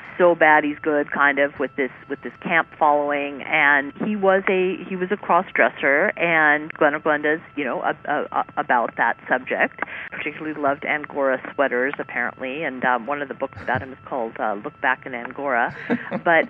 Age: 50-69